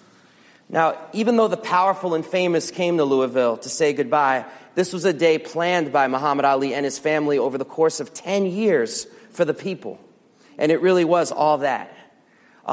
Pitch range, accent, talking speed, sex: 150-195 Hz, American, 190 wpm, male